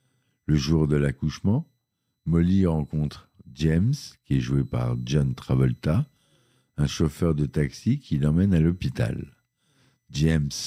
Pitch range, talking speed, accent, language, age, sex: 70-100 Hz, 125 wpm, French, French, 50-69, male